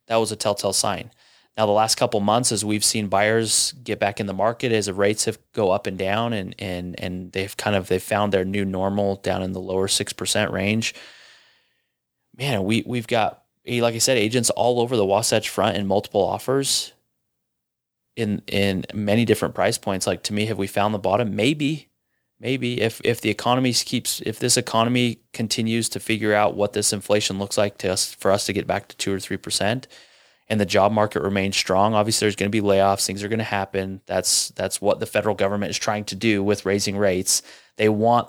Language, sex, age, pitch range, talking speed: English, male, 20-39, 100-115 Hz, 215 wpm